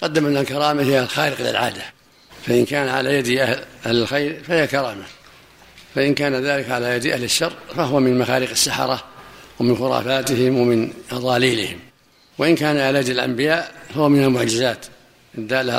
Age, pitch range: 60-79, 125-145 Hz